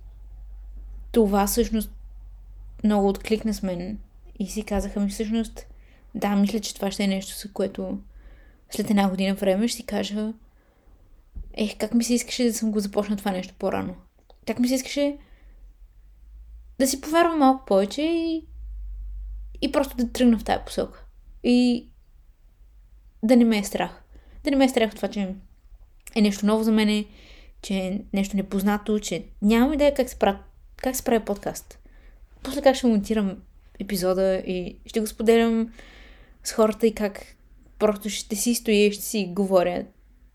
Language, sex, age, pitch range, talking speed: Bulgarian, female, 20-39, 195-245 Hz, 165 wpm